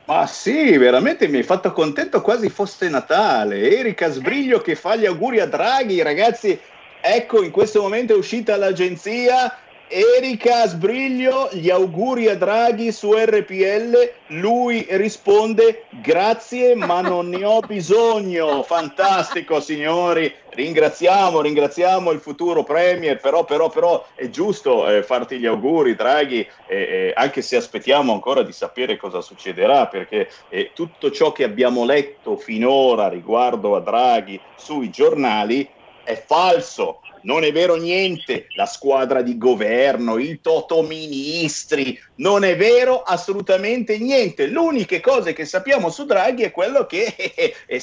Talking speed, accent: 140 wpm, native